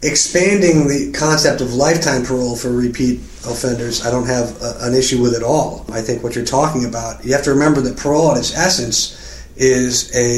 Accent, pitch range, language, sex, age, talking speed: American, 120-145 Hz, English, male, 40-59, 200 wpm